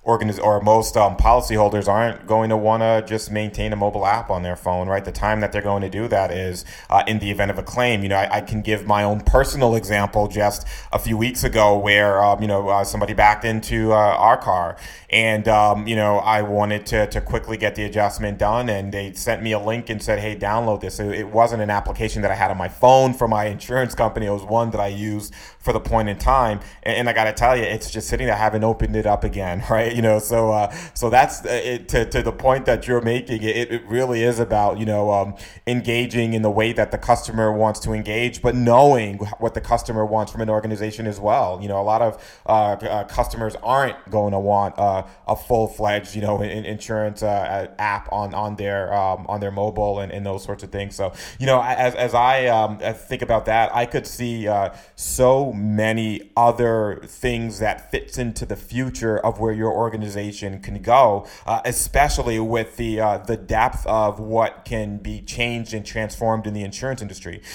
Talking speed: 225 wpm